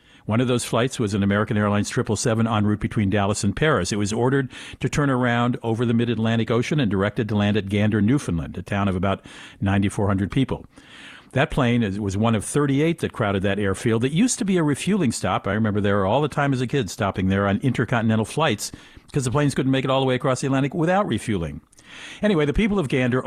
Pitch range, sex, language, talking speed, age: 100-135 Hz, male, English, 225 wpm, 50-69